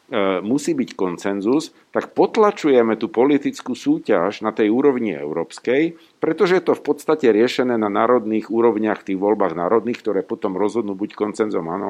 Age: 50-69